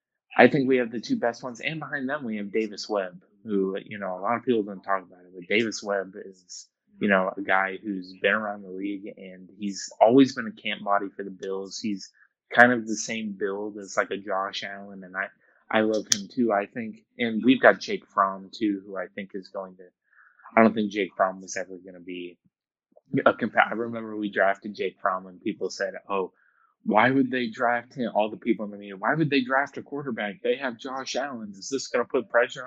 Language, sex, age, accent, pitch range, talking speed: English, male, 20-39, American, 100-120 Hz, 235 wpm